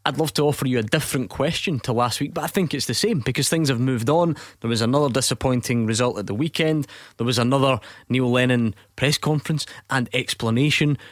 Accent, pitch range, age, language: British, 120-145 Hz, 20-39, English